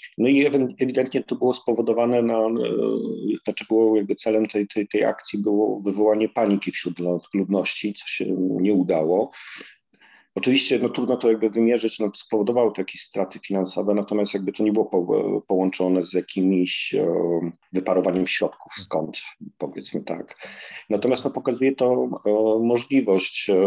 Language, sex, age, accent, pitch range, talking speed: Polish, male, 40-59, native, 95-110 Hz, 145 wpm